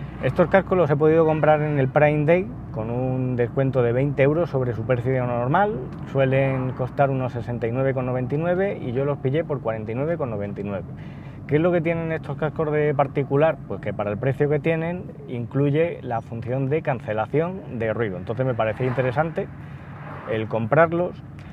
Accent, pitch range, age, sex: Spanish, 115-150 Hz, 30-49, male